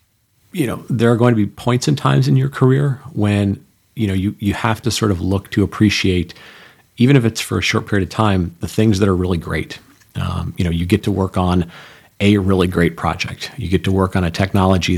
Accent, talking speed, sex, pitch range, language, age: American, 235 wpm, male, 90-110 Hz, English, 40-59